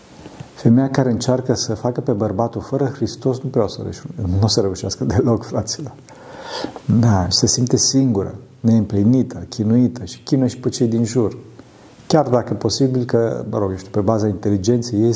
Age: 50-69